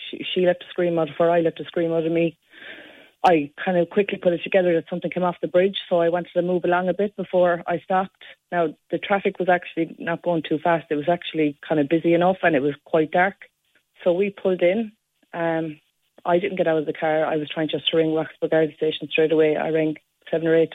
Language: English